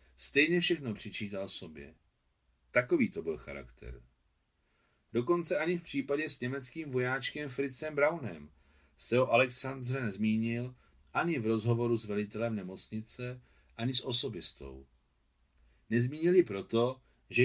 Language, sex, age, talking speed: Czech, male, 40-59, 115 wpm